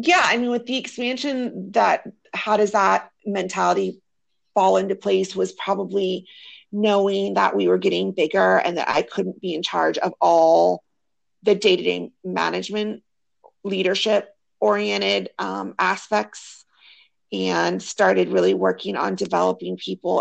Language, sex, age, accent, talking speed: English, female, 30-49, American, 135 wpm